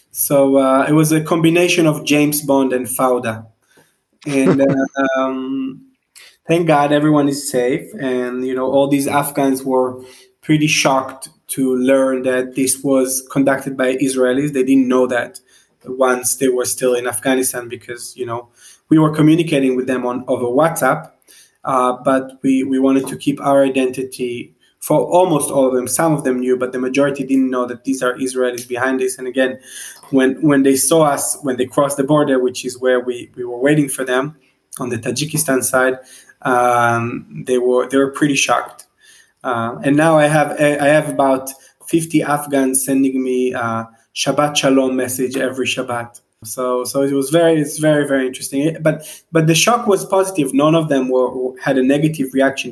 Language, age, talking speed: English, 20-39, 180 wpm